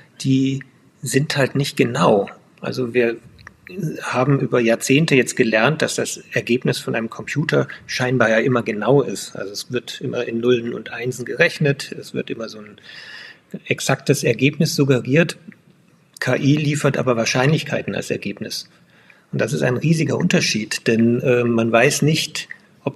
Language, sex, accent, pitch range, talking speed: German, male, German, 120-150 Hz, 150 wpm